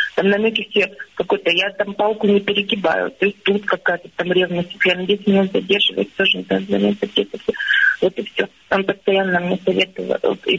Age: 30-49